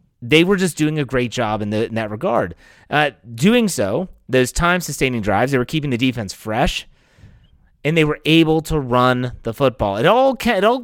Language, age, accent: English, 30-49, American